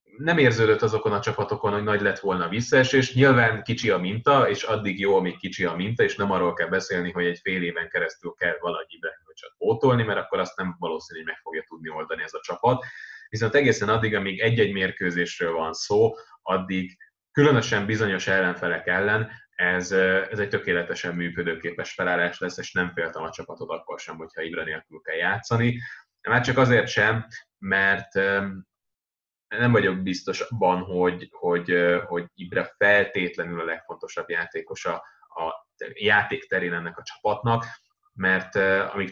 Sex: male